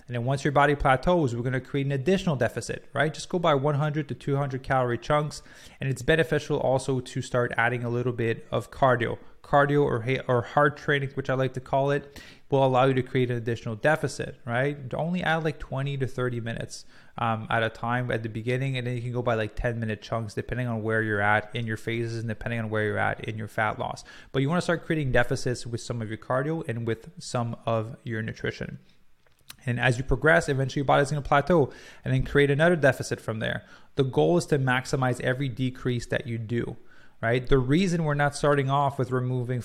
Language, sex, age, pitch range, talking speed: English, male, 20-39, 115-140 Hz, 225 wpm